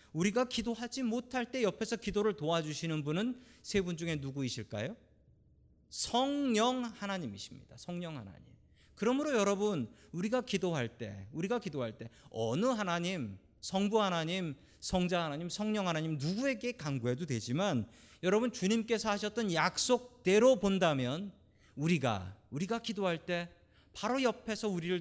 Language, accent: Korean, native